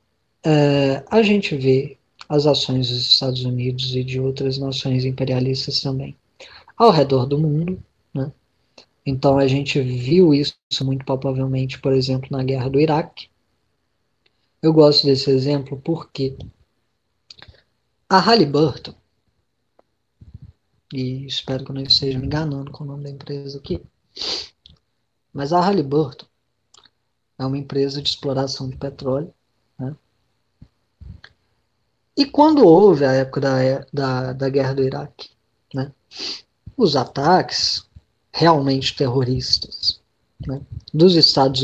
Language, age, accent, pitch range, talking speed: Portuguese, 20-39, Brazilian, 130-145 Hz, 115 wpm